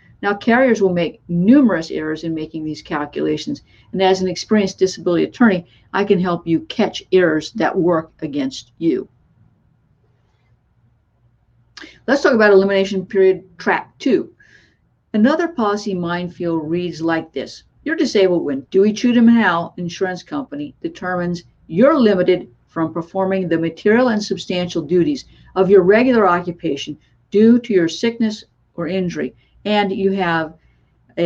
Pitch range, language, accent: 165-210 Hz, English, American